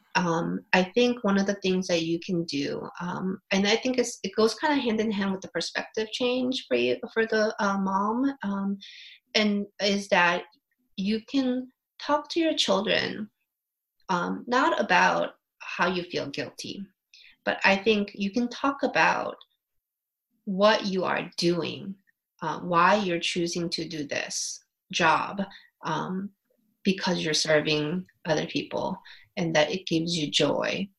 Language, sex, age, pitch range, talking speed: English, female, 30-49, 170-230 Hz, 155 wpm